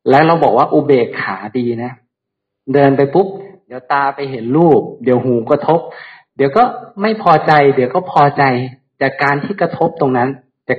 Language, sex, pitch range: Thai, male, 120-150 Hz